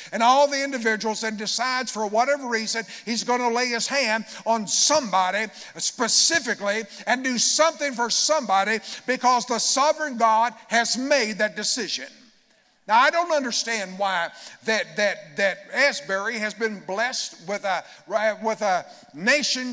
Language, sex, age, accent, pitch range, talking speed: English, male, 50-69, American, 205-250 Hz, 145 wpm